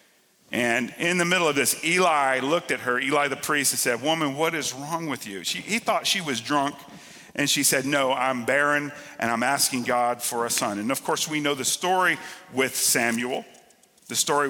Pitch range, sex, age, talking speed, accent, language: 130-165 Hz, male, 50-69, 205 wpm, American, English